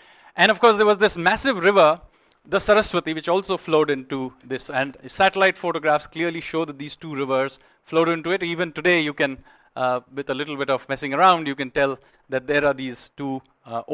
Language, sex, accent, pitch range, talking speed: English, male, Indian, 145-190 Hz, 205 wpm